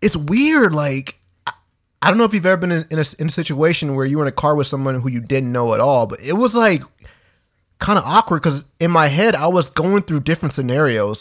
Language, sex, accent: English, male, American